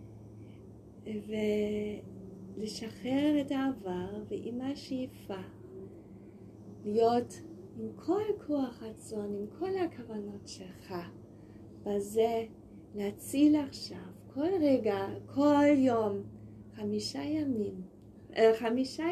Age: 30-49